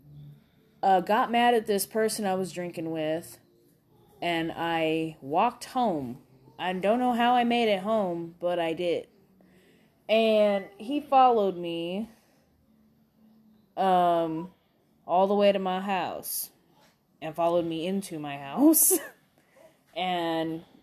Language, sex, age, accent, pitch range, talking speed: English, female, 20-39, American, 165-220 Hz, 125 wpm